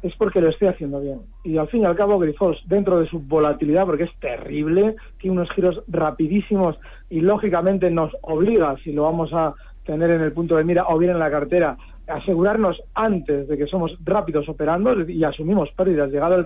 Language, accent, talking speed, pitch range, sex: Spanish, Spanish, 200 wpm, 160-205 Hz, male